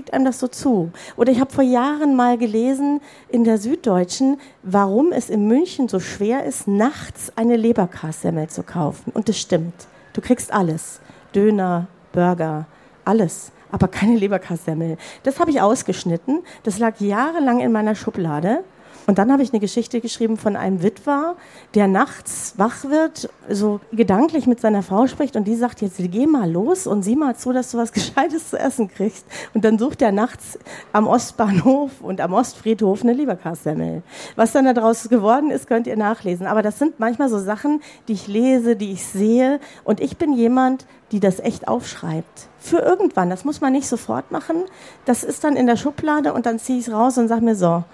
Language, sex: German, female